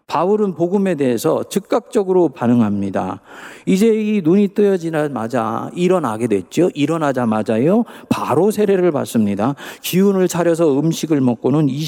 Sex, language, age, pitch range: male, Korean, 40-59, 120-205 Hz